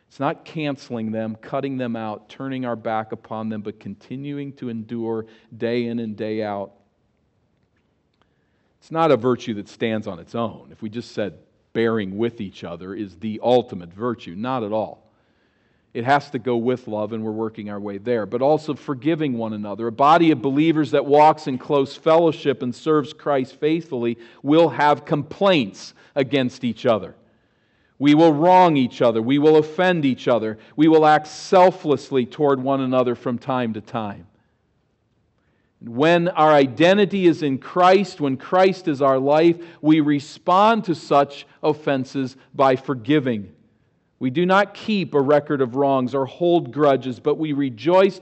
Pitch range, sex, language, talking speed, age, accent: 115-155 Hz, male, English, 165 wpm, 40-59, American